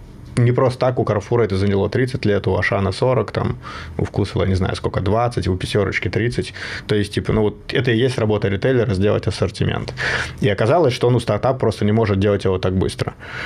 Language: Russian